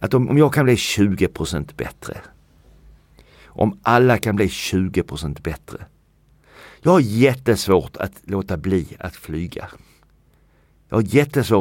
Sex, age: male, 60-79